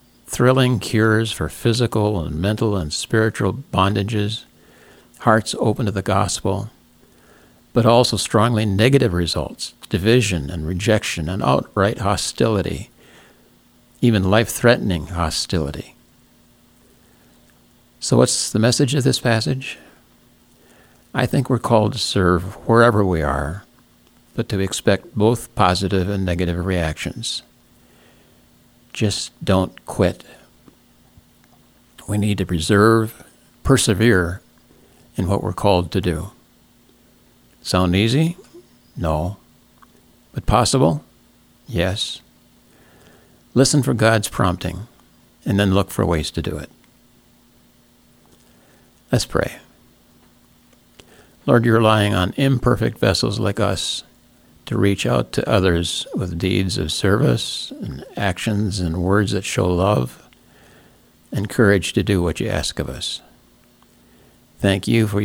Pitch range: 90-115 Hz